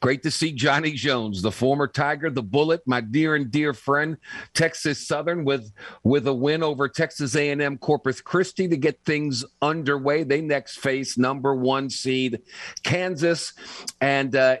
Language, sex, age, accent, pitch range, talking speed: English, male, 50-69, American, 130-165 Hz, 160 wpm